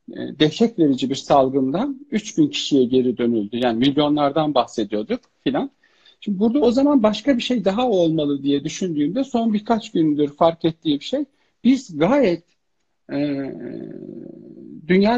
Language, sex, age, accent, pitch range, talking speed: Turkish, male, 50-69, native, 150-215 Hz, 140 wpm